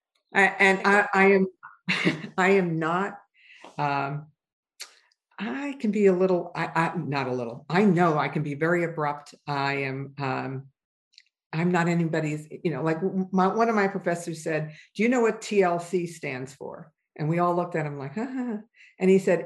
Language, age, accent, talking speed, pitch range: English, 50-69, American, 180 wpm, 165-220 Hz